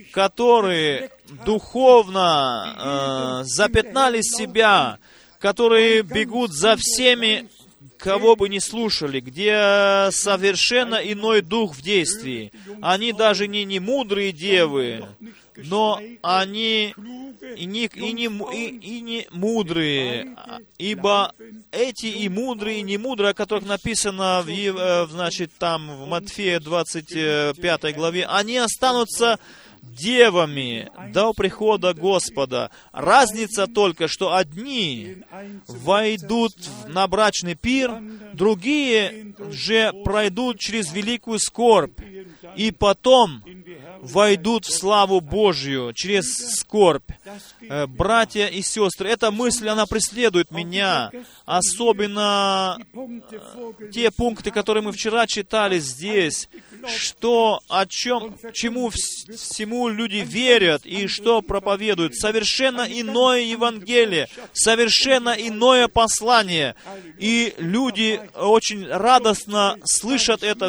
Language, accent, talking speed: Russian, native, 95 wpm